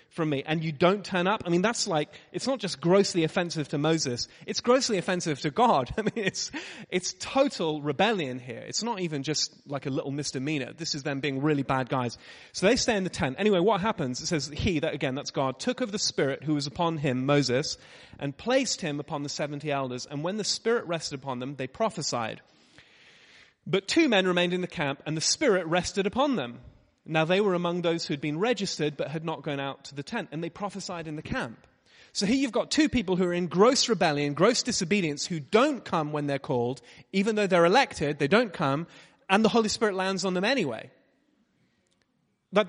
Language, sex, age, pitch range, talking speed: English, male, 30-49, 150-205 Hz, 220 wpm